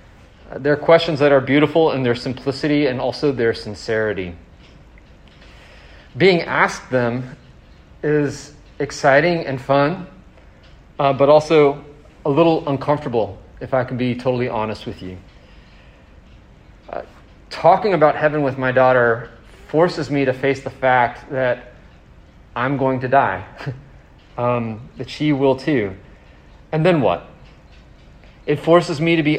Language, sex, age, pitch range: English, male, 30-49, 115-150 Hz